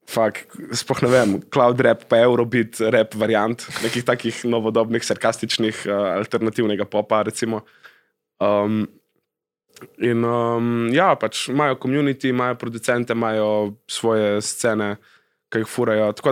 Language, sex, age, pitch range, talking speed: Slovak, male, 20-39, 105-120 Hz, 120 wpm